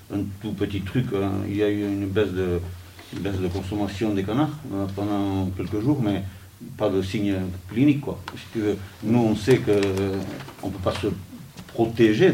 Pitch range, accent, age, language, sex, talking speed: 95-110 Hz, French, 50-69, French, male, 200 wpm